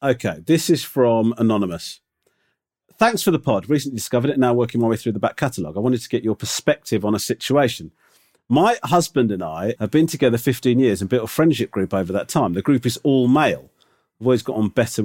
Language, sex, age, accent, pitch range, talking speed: English, male, 40-59, British, 105-130 Hz, 225 wpm